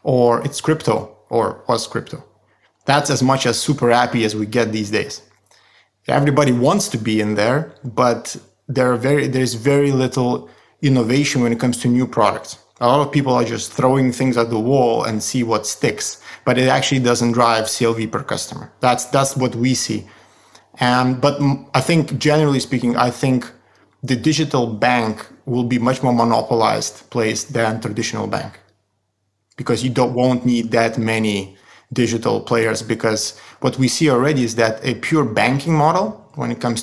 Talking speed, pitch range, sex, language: 180 wpm, 115-130 Hz, male, English